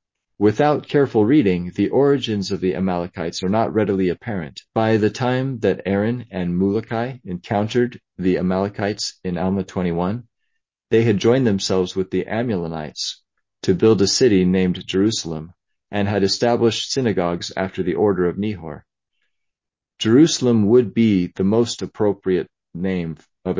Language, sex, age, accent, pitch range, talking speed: English, male, 40-59, American, 90-110 Hz, 140 wpm